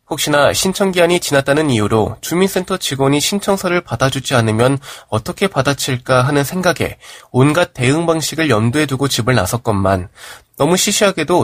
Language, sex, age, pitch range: Korean, male, 20-39, 115-170 Hz